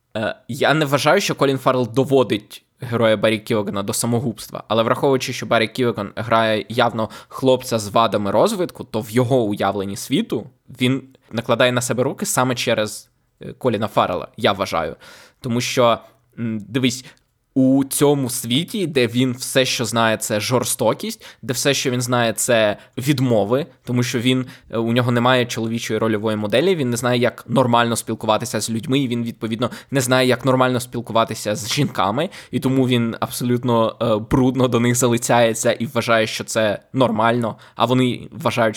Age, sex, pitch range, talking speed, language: 20-39, male, 115-135 Hz, 160 wpm, Ukrainian